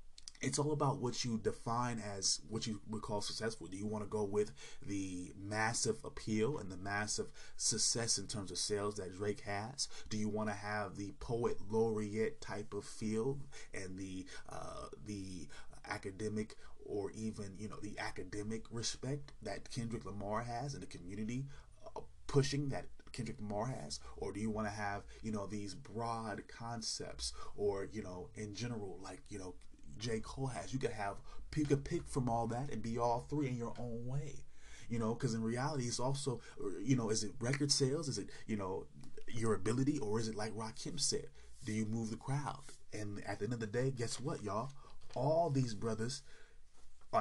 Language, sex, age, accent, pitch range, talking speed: English, male, 30-49, American, 105-135 Hz, 195 wpm